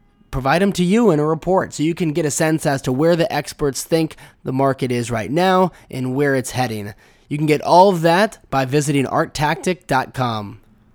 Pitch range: 125-155 Hz